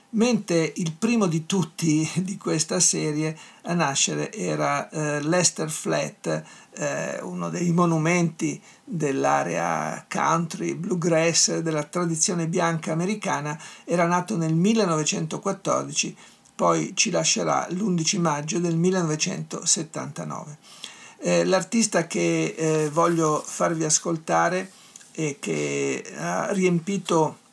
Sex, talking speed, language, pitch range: male, 100 wpm, Italian, 155-180 Hz